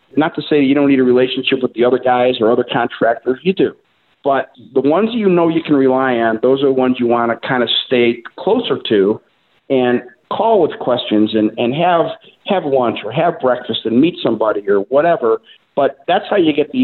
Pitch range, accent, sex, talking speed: 120-155 Hz, American, male, 215 wpm